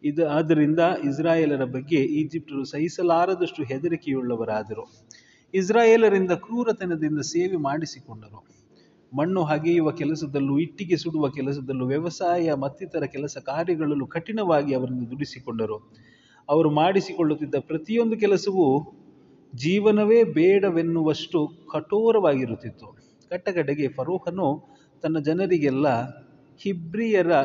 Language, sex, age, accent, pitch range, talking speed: Kannada, male, 30-49, native, 130-175 Hz, 80 wpm